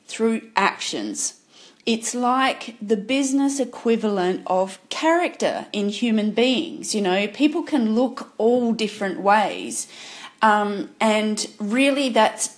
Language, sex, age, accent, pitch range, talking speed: English, female, 30-49, Australian, 205-270 Hz, 115 wpm